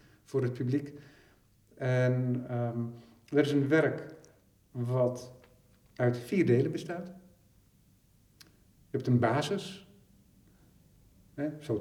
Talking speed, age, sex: 90 wpm, 50-69, male